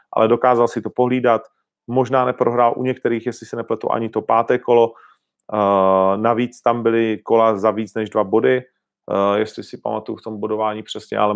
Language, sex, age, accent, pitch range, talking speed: Czech, male, 30-49, native, 105-125 Hz, 175 wpm